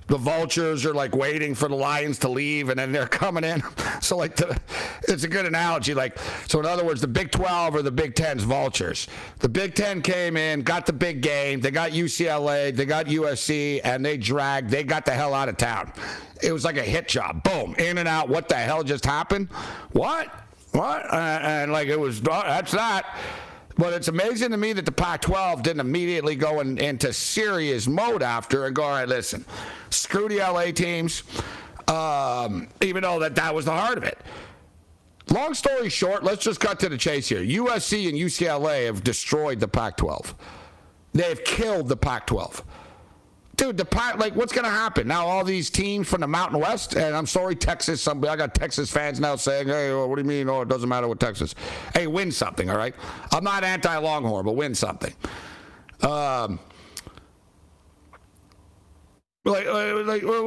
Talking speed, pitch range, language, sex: 190 wpm, 140-185 Hz, English, male